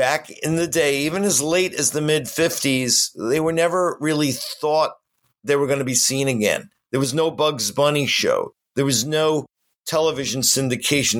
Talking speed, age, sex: 175 wpm, 50-69, male